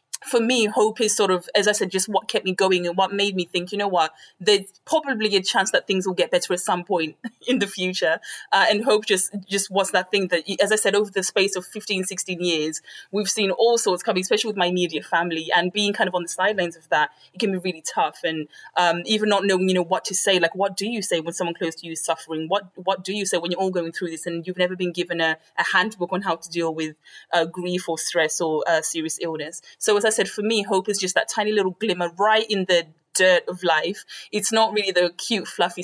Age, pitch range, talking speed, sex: 20-39, 170-200 Hz, 270 wpm, female